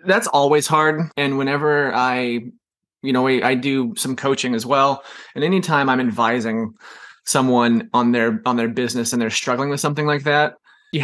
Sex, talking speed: male, 180 wpm